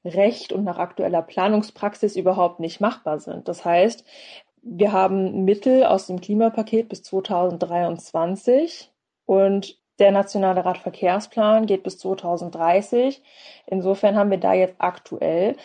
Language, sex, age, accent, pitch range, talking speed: German, female, 20-39, German, 180-205 Hz, 125 wpm